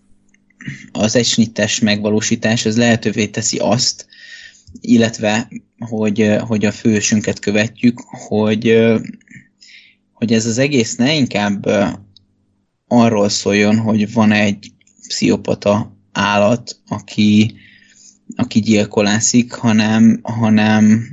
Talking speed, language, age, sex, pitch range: 90 wpm, Hungarian, 20-39, male, 105-115 Hz